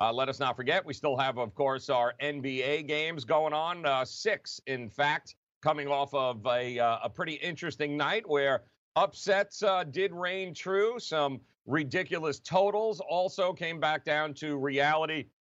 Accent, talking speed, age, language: American, 165 wpm, 40-59, English